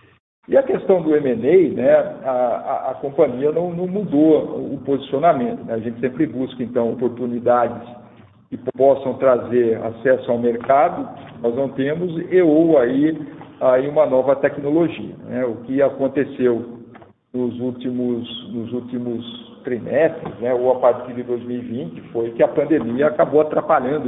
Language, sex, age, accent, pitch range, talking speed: Portuguese, male, 50-69, Brazilian, 120-140 Hz, 145 wpm